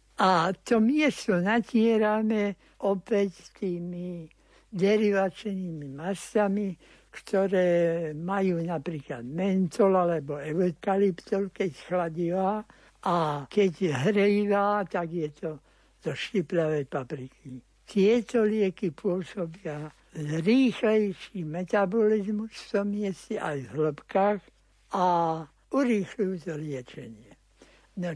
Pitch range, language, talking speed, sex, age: 170-210 Hz, Slovak, 85 wpm, male, 60-79